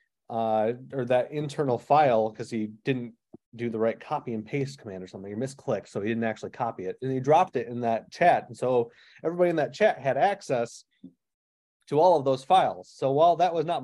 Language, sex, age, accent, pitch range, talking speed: English, male, 30-49, American, 115-155 Hz, 215 wpm